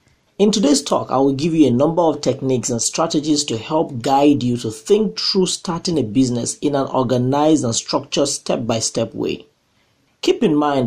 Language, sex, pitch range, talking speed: English, male, 125-170 Hz, 180 wpm